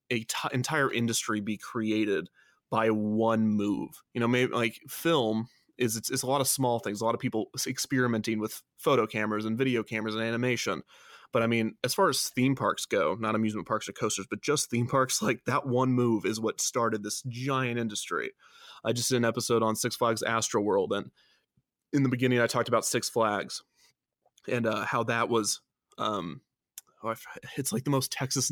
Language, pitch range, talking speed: English, 110-125 Hz, 195 wpm